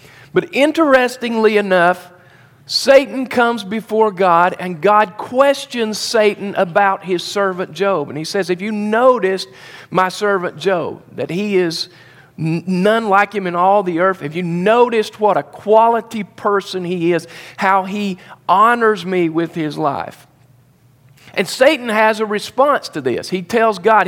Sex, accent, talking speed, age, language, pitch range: male, American, 150 wpm, 50-69, English, 150-220 Hz